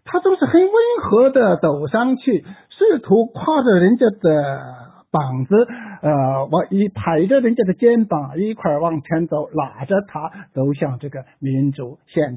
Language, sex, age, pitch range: Chinese, male, 60-79, 135-205 Hz